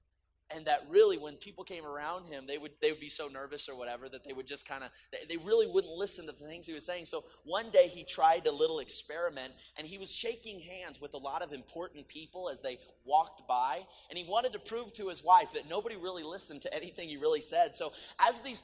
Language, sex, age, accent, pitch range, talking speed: English, male, 30-49, American, 150-240 Hz, 245 wpm